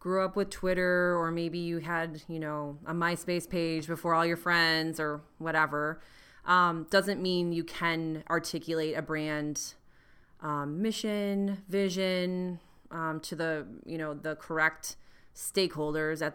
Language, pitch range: English, 155-180 Hz